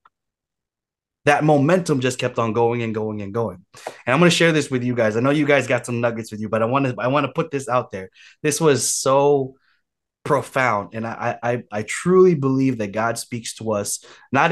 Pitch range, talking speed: 105-135 Hz, 225 wpm